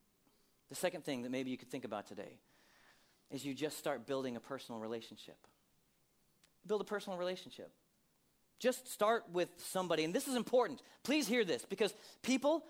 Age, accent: 40-59, American